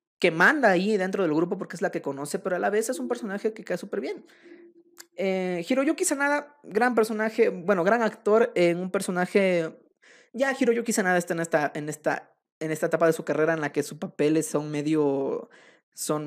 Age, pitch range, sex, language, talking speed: 20-39, 160-230 Hz, male, Spanish, 205 wpm